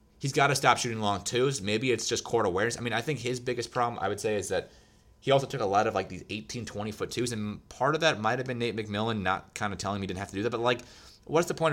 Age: 30-49